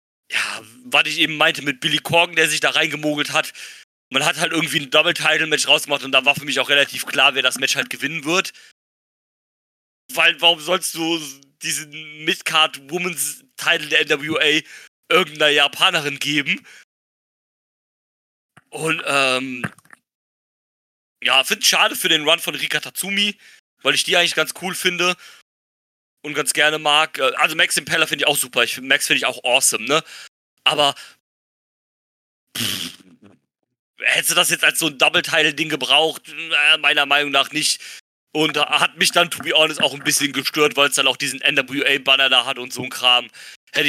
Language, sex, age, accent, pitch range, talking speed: German, male, 40-59, German, 135-160 Hz, 165 wpm